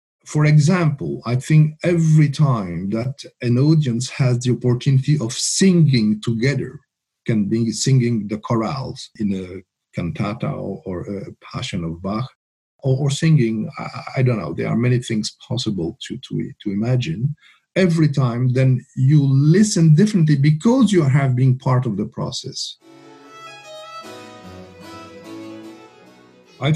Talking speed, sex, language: 135 wpm, male, English